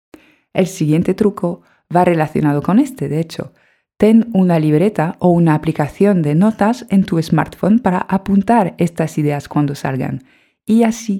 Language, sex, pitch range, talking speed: Spanish, female, 155-205 Hz, 150 wpm